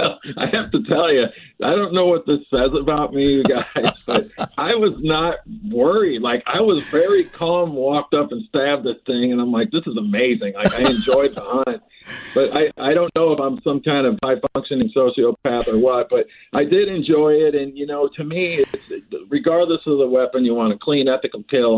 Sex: male